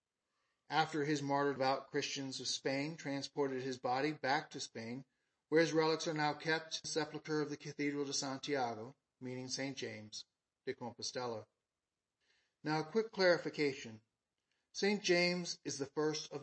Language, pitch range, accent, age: English, 125-155 Hz, American, 40-59